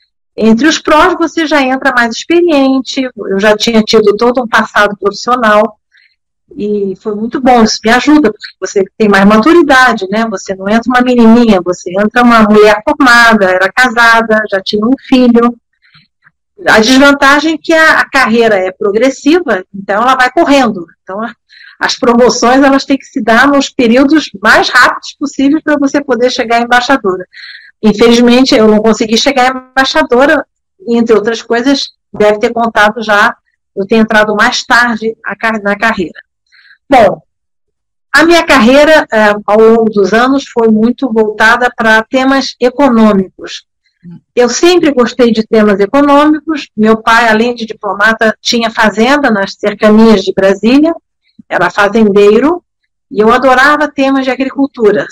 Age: 50-69